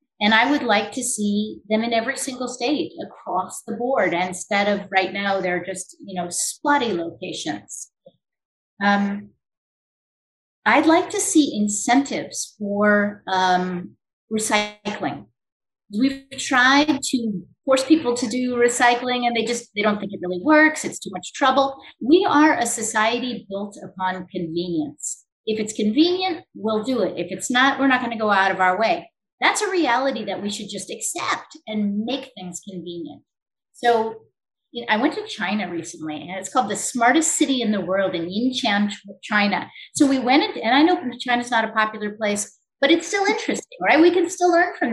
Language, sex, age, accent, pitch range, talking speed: English, female, 30-49, American, 200-275 Hz, 180 wpm